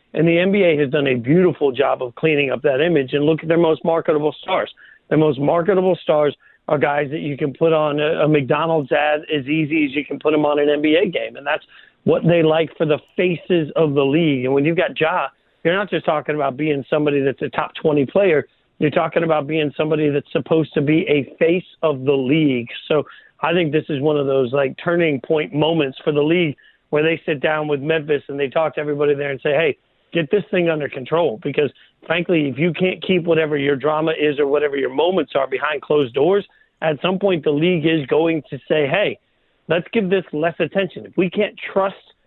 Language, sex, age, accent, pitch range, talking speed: English, male, 40-59, American, 145-170 Hz, 225 wpm